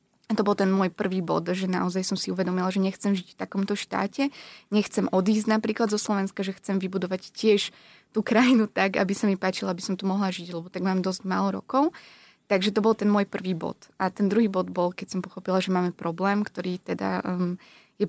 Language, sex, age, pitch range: Slovak, female, 20-39, 185-210 Hz